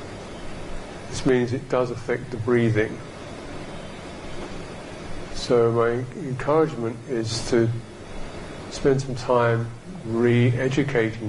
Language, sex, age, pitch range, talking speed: English, male, 50-69, 105-120 Hz, 85 wpm